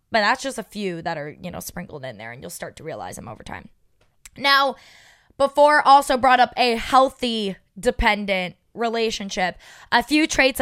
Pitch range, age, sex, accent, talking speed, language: 185-245 Hz, 20-39, female, American, 180 wpm, English